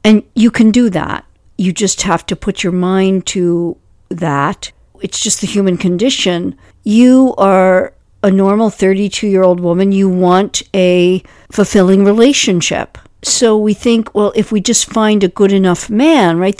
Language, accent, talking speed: English, American, 155 wpm